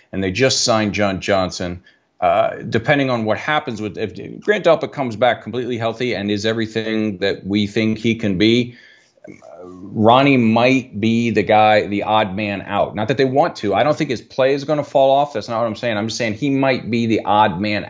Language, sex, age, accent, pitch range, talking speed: English, male, 40-59, American, 100-115 Hz, 220 wpm